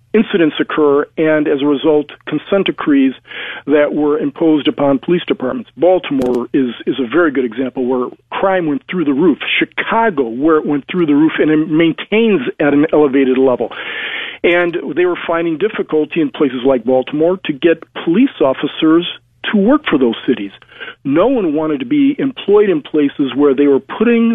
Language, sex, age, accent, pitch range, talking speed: English, male, 40-59, American, 135-180 Hz, 175 wpm